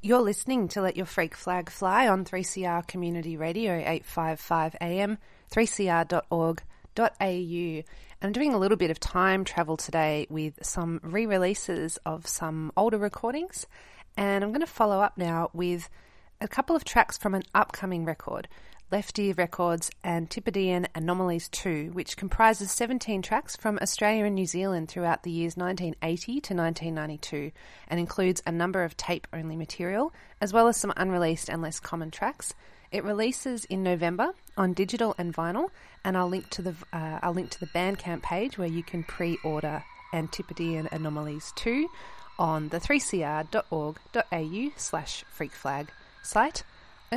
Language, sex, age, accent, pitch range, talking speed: English, female, 30-49, Australian, 165-205 Hz, 145 wpm